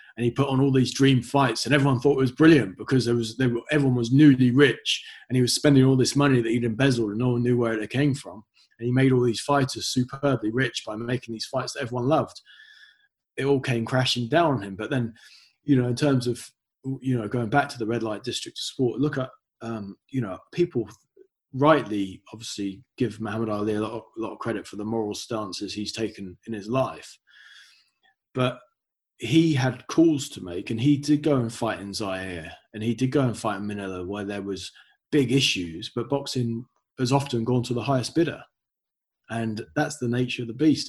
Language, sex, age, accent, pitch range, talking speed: English, male, 20-39, British, 115-140 Hz, 220 wpm